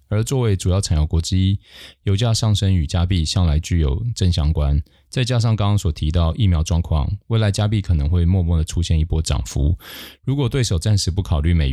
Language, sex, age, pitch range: Chinese, male, 20-39, 80-95 Hz